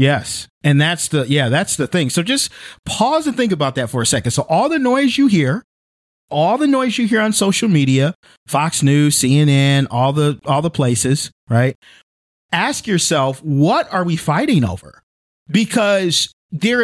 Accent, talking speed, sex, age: American, 180 wpm, male, 40-59